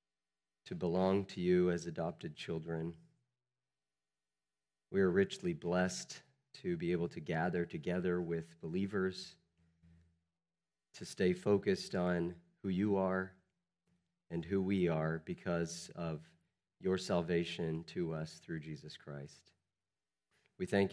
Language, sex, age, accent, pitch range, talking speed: English, male, 40-59, American, 80-100 Hz, 120 wpm